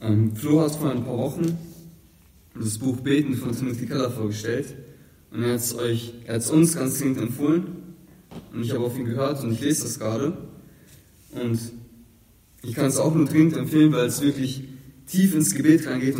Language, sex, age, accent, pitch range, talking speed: German, male, 20-39, German, 115-155 Hz, 195 wpm